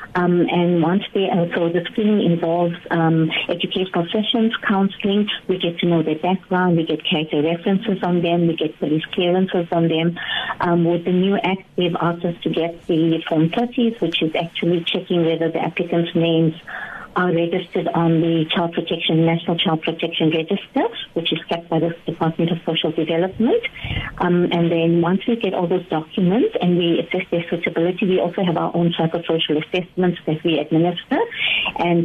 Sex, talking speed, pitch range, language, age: female, 180 wpm, 165-185 Hz, English, 50-69